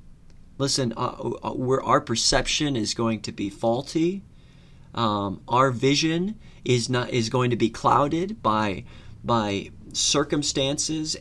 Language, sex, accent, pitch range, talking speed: English, male, American, 110-140 Hz, 125 wpm